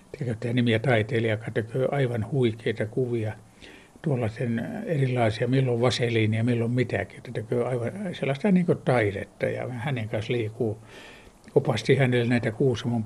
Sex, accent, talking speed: male, native, 130 wpm